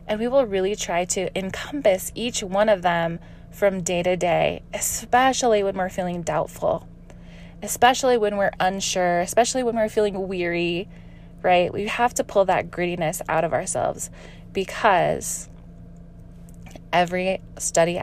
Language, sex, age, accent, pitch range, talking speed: English, female, 20-39, American, 170-220 Hz, 140 wpm